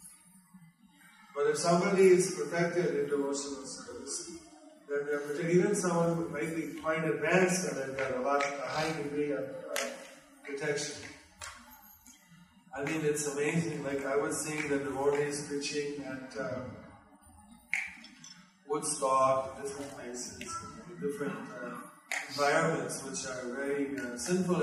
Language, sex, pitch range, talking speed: English, male, 135-170 Hz, 120 wpm